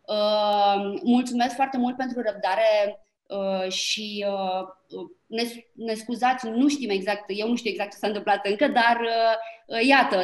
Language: Romanian